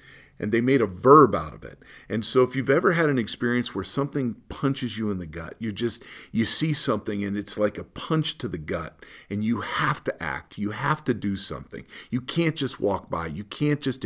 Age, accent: 50-69, American